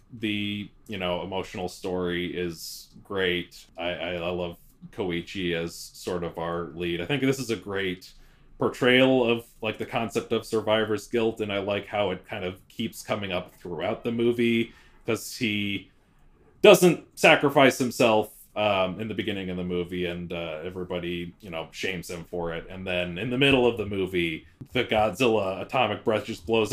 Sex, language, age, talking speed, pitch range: male, English, 30-49, 175 wpm, 90-120 Hz